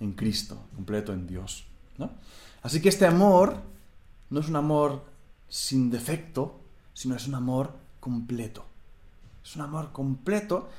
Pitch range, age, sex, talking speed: 95-145 Hz, 30-49, male, 140 wpm